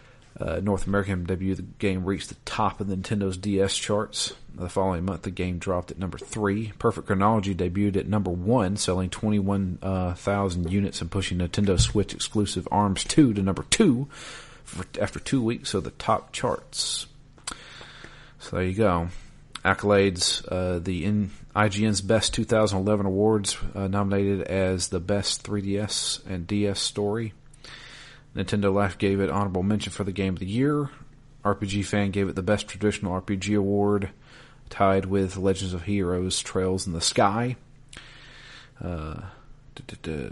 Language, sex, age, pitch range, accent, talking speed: English, male, 40-59, 95-105 Hz, American, 150 wpm